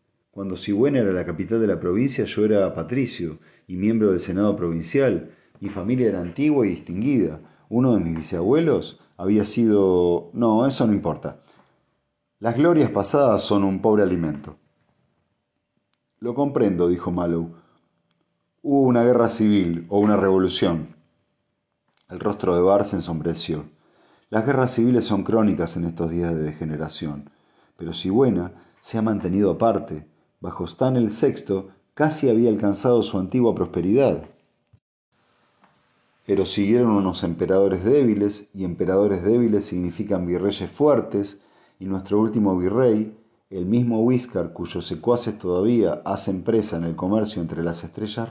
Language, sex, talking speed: Spanish, male, 140 wpm